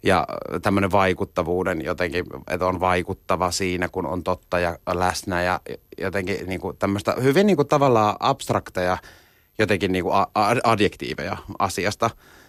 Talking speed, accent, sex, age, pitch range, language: 120 wpm, native, male, 30-49, 90-100 Hz, Finnish